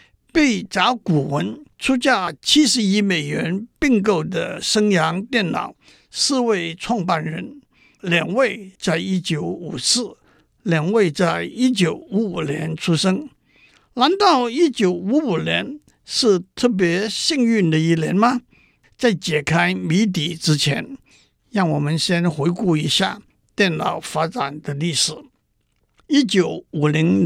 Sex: male